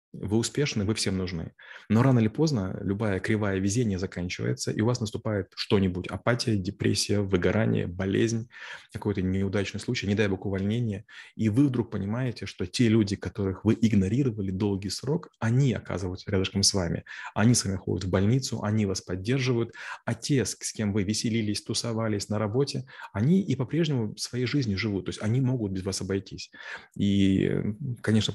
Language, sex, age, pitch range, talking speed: Russian, male, 20-39, 100-115 Hz, 165 wpm